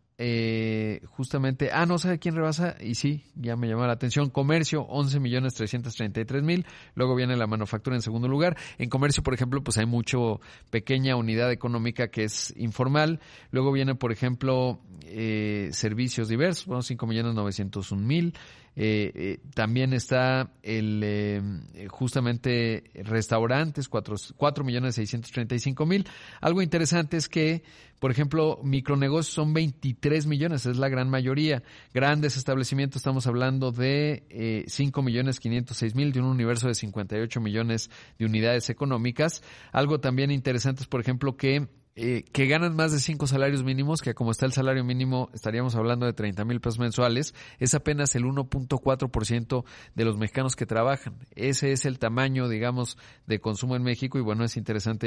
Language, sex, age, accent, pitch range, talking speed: Spanish, male, 40-59, Mexican, 115-140 Hz, 160 wpm